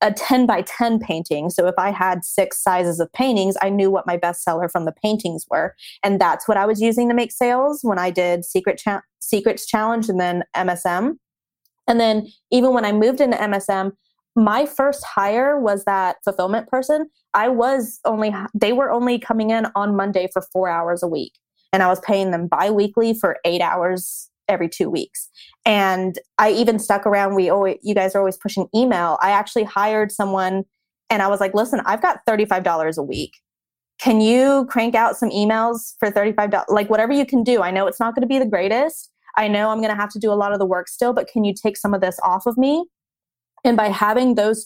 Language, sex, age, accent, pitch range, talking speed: English, female, 20-39, American, 195-235 Hz, 215 wpm